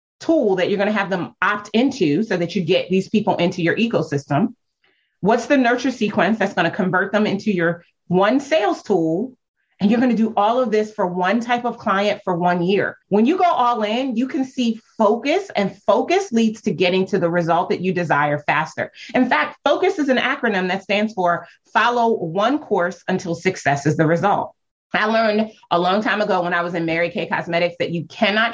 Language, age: English, 30-49